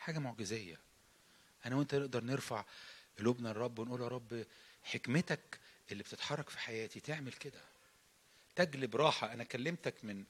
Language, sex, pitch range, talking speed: English, male, 110-170 Hz, 135 wpm